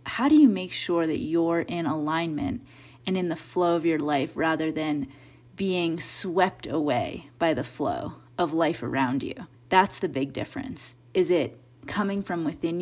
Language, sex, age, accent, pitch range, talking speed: English, female, 30-49, American, 155-195 Hz, 175 wpm